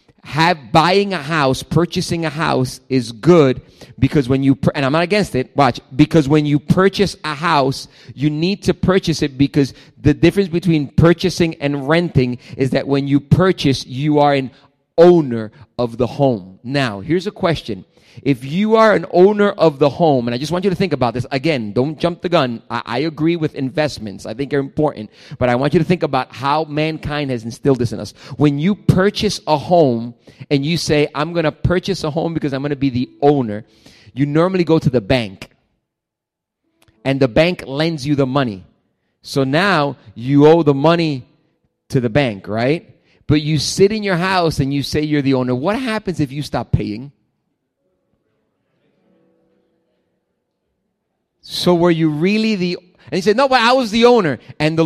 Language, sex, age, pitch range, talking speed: English, male, 30-49, 130-170 Hz, 190 wpm